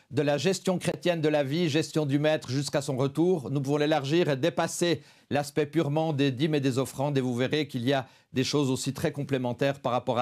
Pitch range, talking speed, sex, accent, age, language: 140-165 Hz, 225 wpm, male, French, 50-69, French